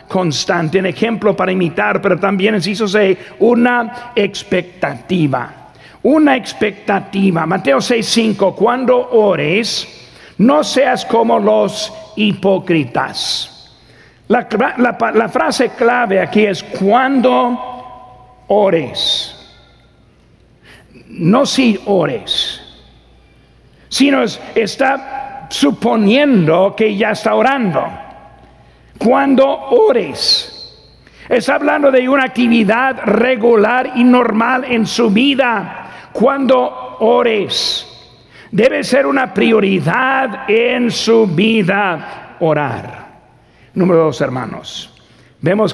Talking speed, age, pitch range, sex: 90 wpm, 60-79, 185-245 Hz, male